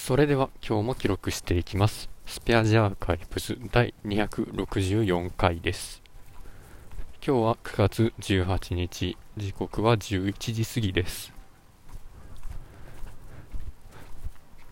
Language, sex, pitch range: Japanese, male, 90-110 Hz